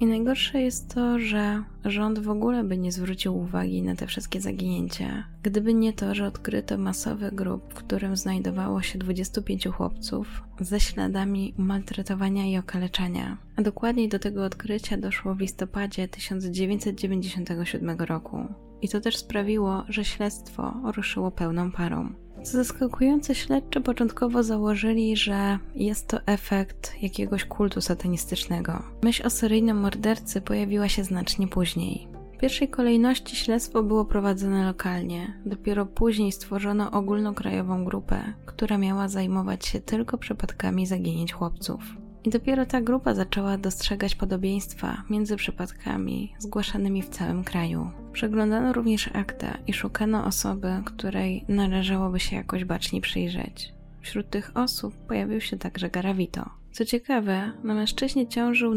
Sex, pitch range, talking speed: female, 185-220 Hz, 135 wpm